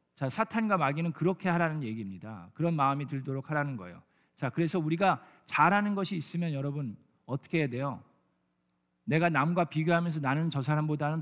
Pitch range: 130-175 Hz